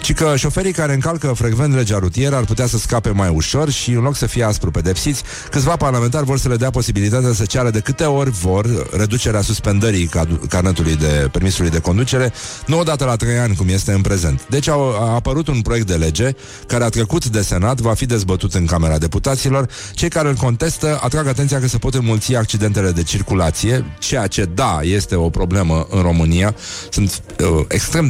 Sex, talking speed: male, 200 wpm